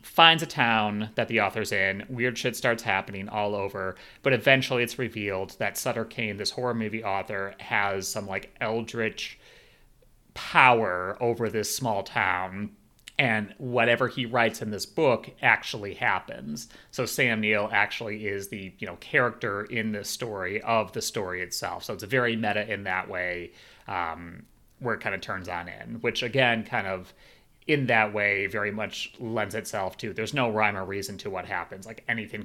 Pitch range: 100-120 Hz